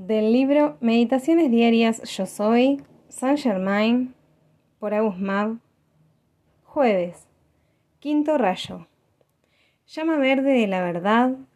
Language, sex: Spanish, female